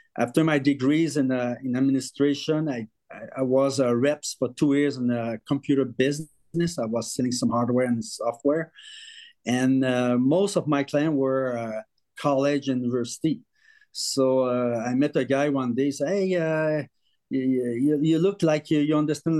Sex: male